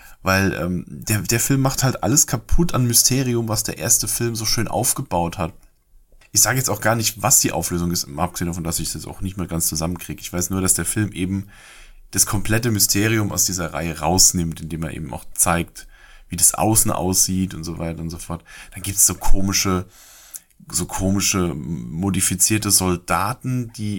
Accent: German